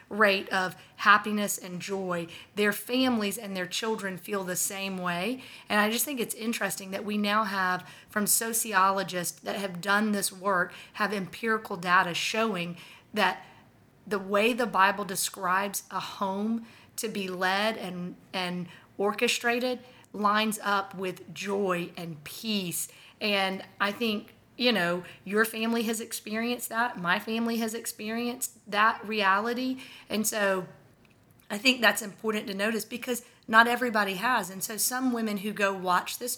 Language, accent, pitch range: English, American, 195-230 Hz